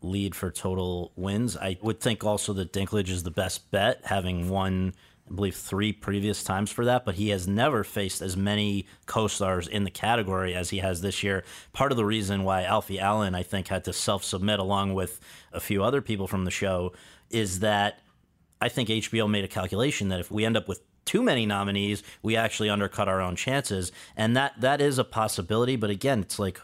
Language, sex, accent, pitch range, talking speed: English, male, American, 95-110 Hz, 210 wpm